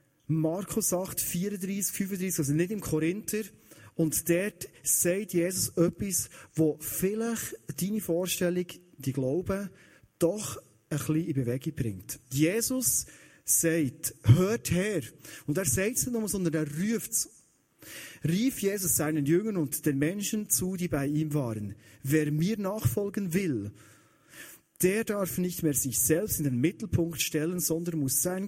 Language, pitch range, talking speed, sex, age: German, 140-185 Hz, 145 wpm, male, 30-49